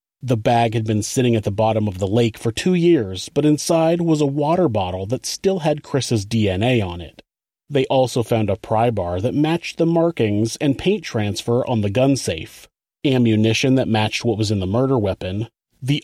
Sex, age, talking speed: male, 30-49, 200 wpm